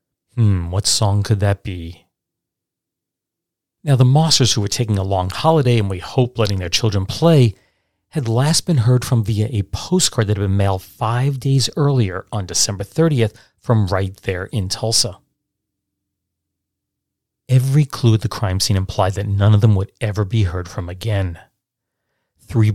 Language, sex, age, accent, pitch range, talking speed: English, male, 40-59, American, 100-120 Hz, 165 wpm